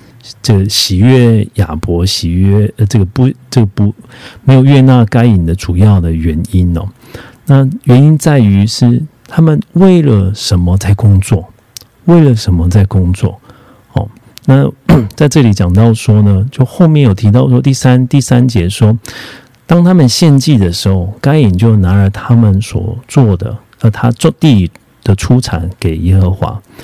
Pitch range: 100-130 Hz